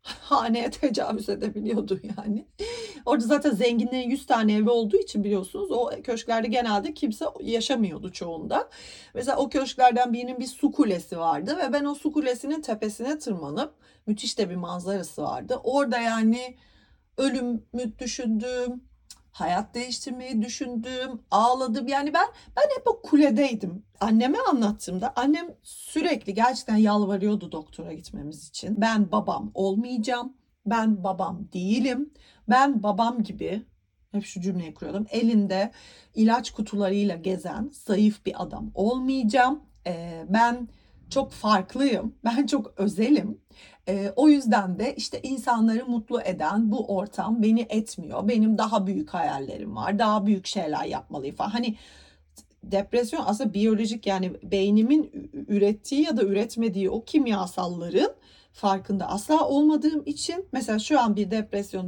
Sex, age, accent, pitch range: female, 40-59, native, 200-260 Hz